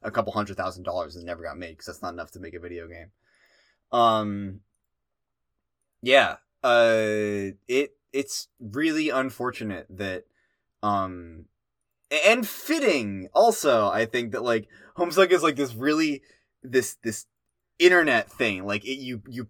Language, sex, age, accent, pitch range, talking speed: English, male, 20-39, American, 100-135 Hz, 145 wpm